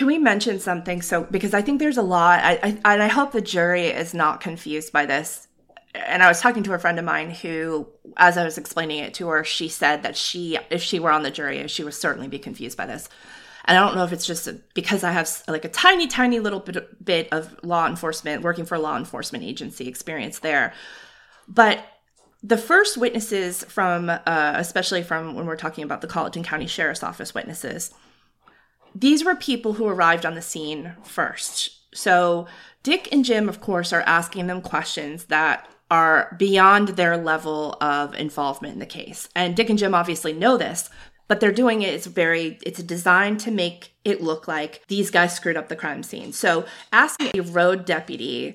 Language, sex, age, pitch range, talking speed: English, female, 20-39, 160-205 Hz, 200 wpm